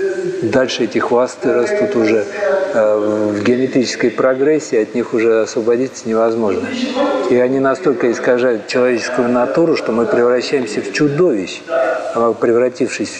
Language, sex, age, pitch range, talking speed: Russian, male, 50-69, 110-145 Hz, 115 wpm